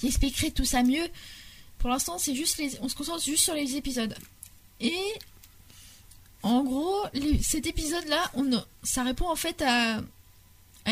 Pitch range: 235-290 Hz